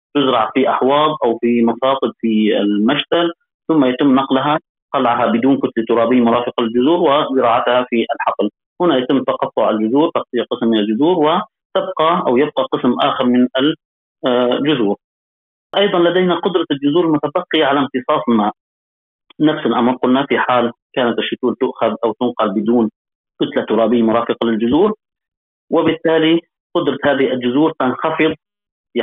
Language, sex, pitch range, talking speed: Arabic, male, 115-150 Hz, 130 wpm